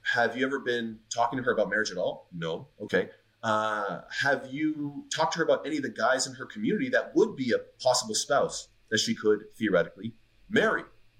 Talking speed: 205 wpm